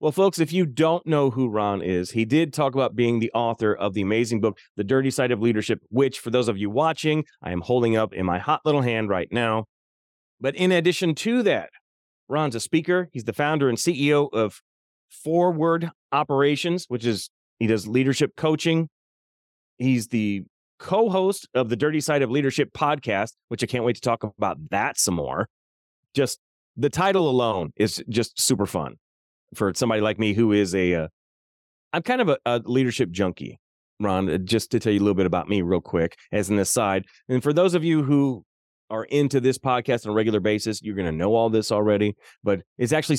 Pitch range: 100-140 Hz